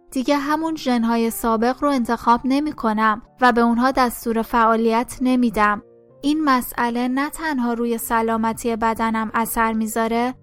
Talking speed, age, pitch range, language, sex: 130 wpm, 10-29, 230-255 Hz, Persian, female